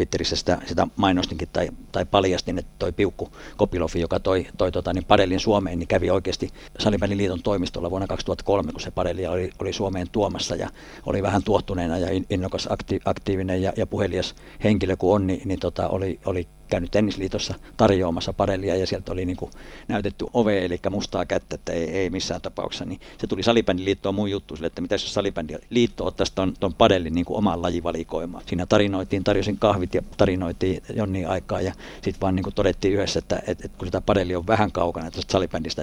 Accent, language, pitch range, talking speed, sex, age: native, Finnish, 90-100 Hz, 190 wpm, male, 60-79